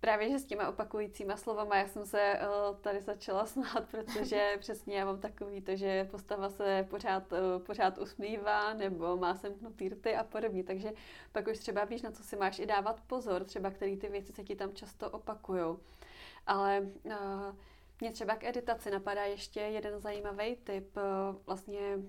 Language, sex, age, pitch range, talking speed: Czech, female, 20-39, 200-220 Hz, 180 wpm